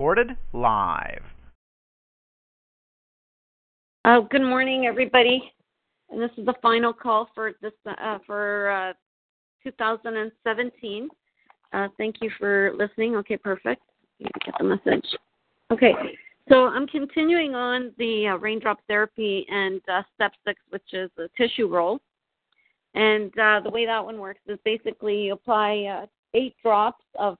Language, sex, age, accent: English, female, 50-69, American